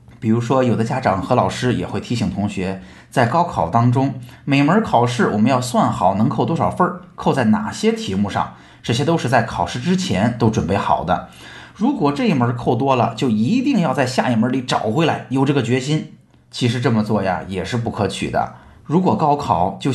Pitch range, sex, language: 105-145 Hz, male, Chinese